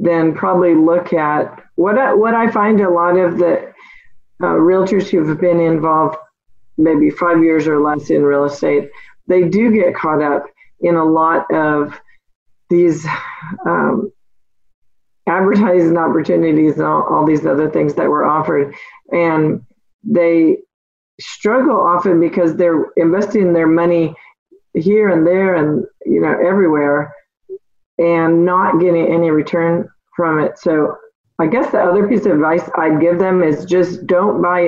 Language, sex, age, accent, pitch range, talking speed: English, female, 40-59, American, 160-195 Hz, 150 wpm